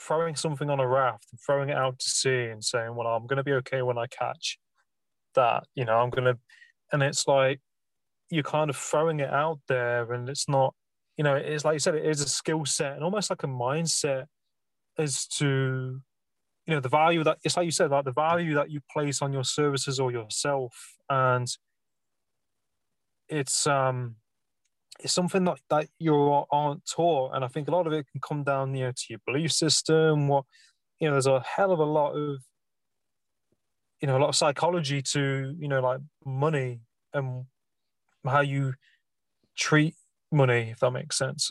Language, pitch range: English, 130-155 Hz